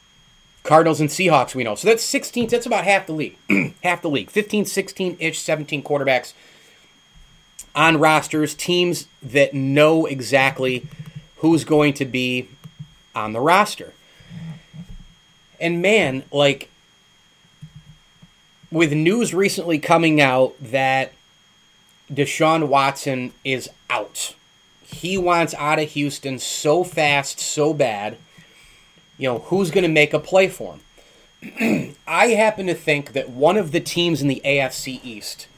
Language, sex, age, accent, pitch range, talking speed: English, male, 30-49, American, 135-165 Hz, 130 wpm